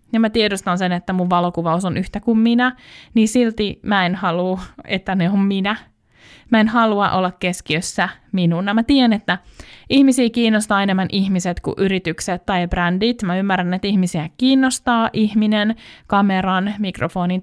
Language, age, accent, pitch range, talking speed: Finnish, 20-39, native, 180-230 Hz, 155 wpm